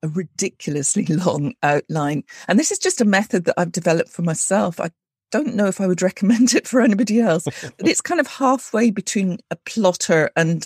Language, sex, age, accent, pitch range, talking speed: English, female, 40-59, British, 155-195 Hz, 195 wpm